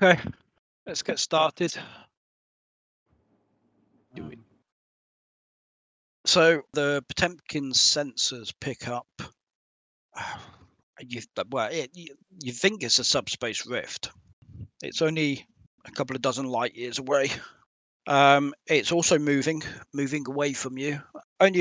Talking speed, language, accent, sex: 105 wpm, English, British, male